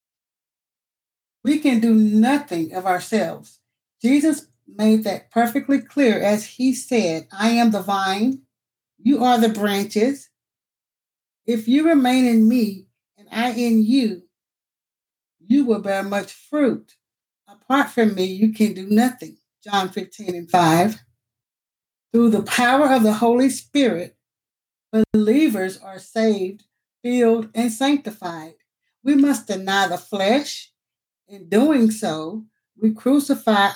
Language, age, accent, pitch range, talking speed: English, 60-79, American, 195-245 Hz, 125 wpm